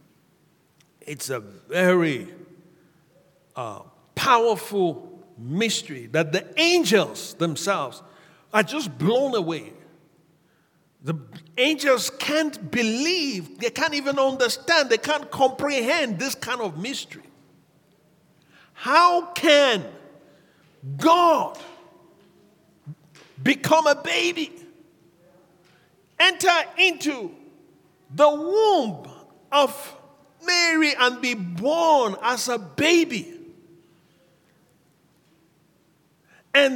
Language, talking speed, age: English, 80 wpm, 50-69